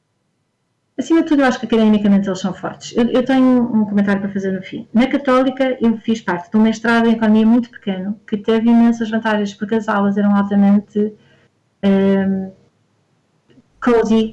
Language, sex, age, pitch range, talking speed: Portuguese, female, 30-49, 200-235 Hz, 170 wpm